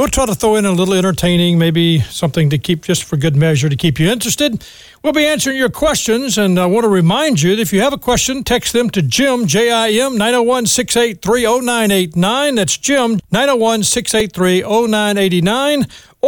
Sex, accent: male, American